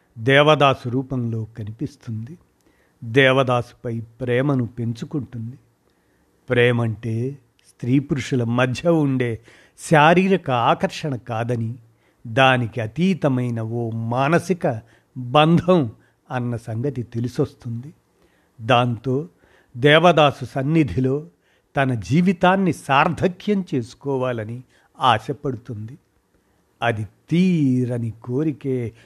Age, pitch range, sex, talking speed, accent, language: 50-69, 115-145 Hz, male, 70 wpm, native, Telugu